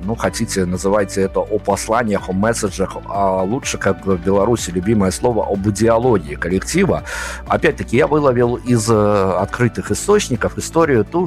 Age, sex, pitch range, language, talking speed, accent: 50-69, male, 95-115 Hz, Russian, 140 wpm, native